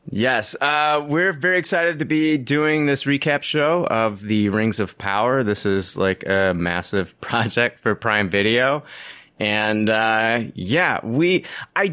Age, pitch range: 30-49, 115-155 Hz